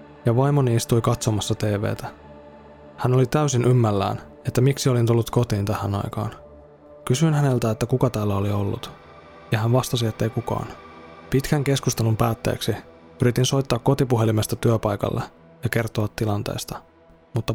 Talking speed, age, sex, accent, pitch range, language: 135 wpm, 20-39, male, native, 110-130 Hz, Finnish